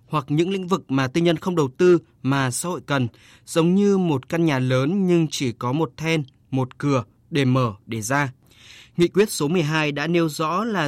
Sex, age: male, 20-39